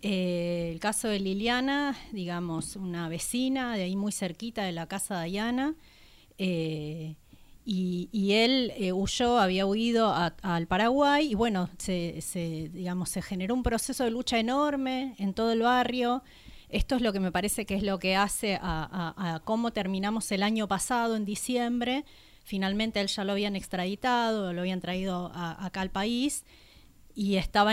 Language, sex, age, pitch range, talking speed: Spanish, female, 30-49, 185-235 Hz, 175 wpm